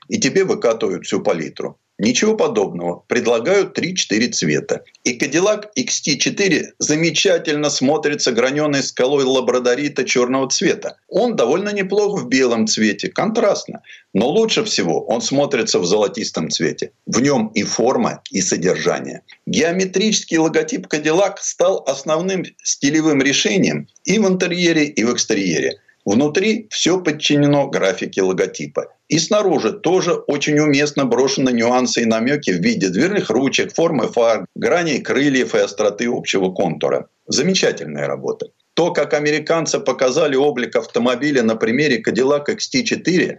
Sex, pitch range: male, 135-200 Hz